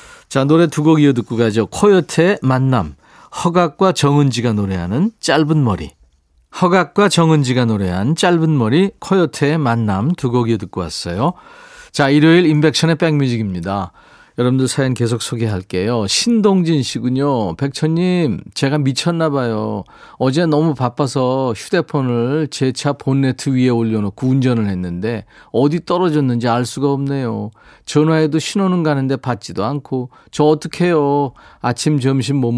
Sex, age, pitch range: male, 40-59, 115-165 Hz